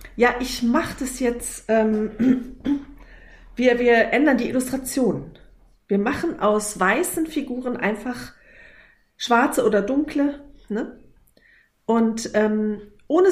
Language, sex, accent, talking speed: German, female, German, 110 wpm